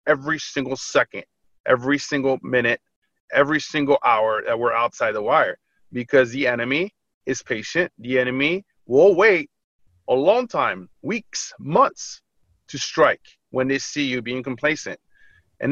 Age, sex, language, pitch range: 30-49, male, English, 125-160 Hz